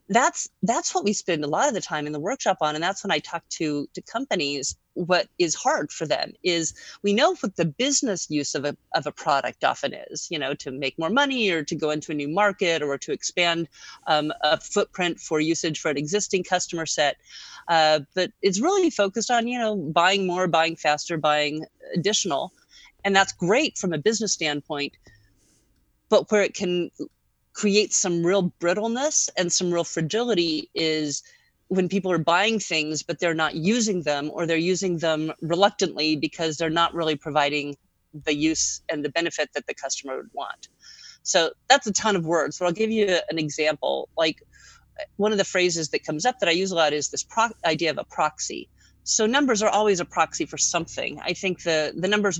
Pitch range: 155-200 Hz